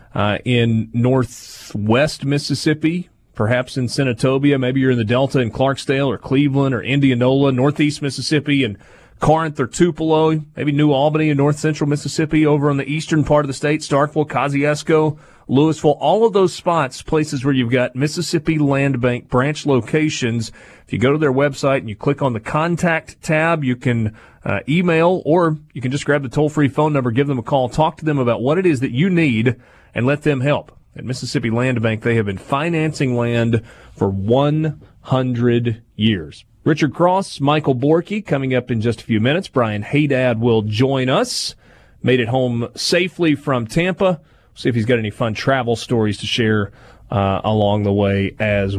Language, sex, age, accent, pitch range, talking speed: English, male, 30-49, American, 115-150 Hz, 180 wpm